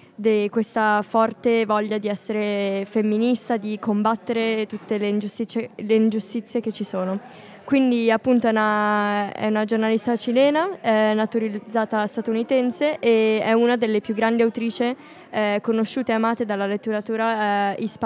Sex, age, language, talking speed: female, 20-39, Italian, 135 wpm